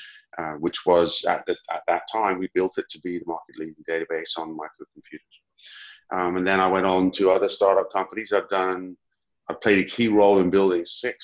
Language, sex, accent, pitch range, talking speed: English, male, British, 85-105 Hz, 205 wpm